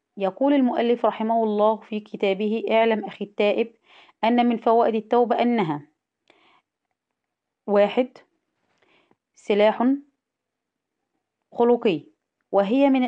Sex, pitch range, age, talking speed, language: female, 200-235 Hz, 20-39, 85 wpm, Arabic